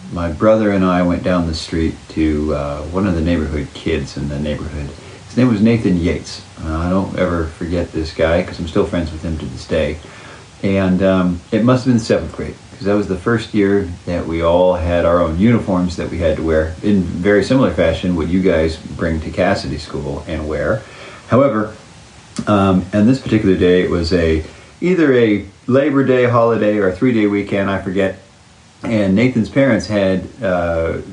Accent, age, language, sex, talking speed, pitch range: American, 40-59, English, male, 200 wpm, 85-105 Hz